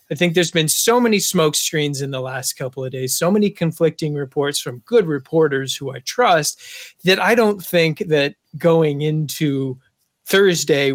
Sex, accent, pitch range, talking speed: male, American, 135-165 Hz, 175 wpm